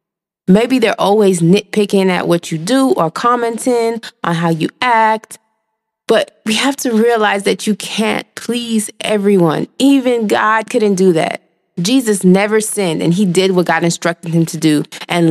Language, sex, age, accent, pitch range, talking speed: English, female, 20-39, American, 175-225 Hz, 165 wpm